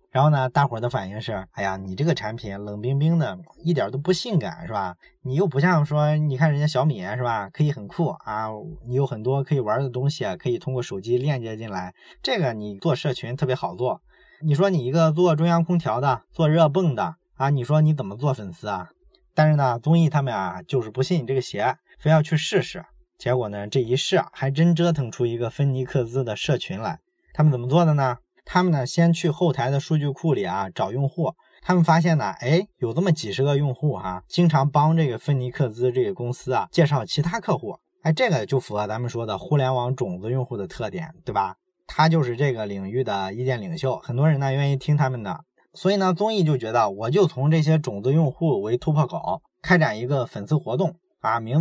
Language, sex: Chinese, male